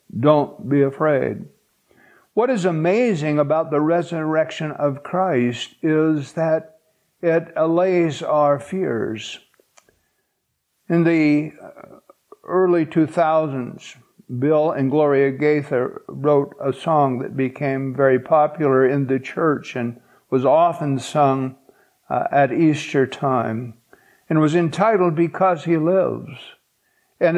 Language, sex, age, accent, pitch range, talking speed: English, male, 60-79, American, 140-175 Hz, 105 wpm